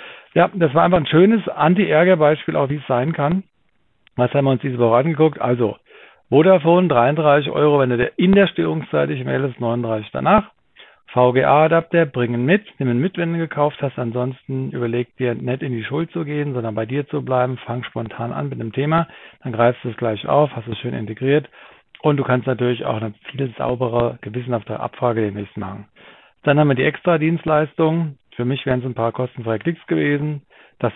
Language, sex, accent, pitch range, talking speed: German, male, German, 115-150 Hz, 200 wpm